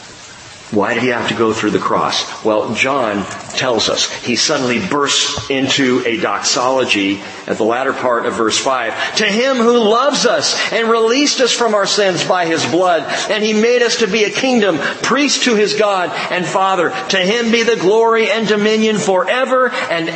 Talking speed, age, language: 190 wpm, 50-69, English